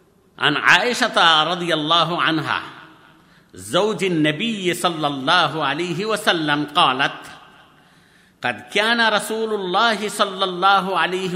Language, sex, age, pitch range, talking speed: Bengali, male, 50-69, 155-210 Hz, 65 wpm